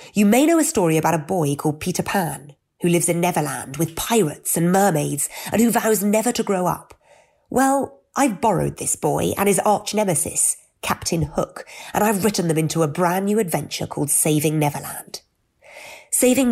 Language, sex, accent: English, female, British